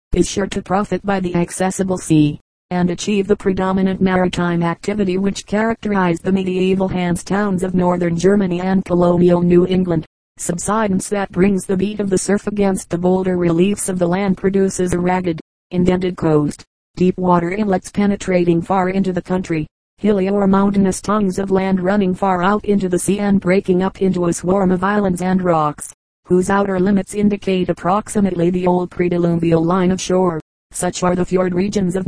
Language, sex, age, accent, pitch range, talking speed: English, female, 40-59, American, 175-195 Hz, 175 wpm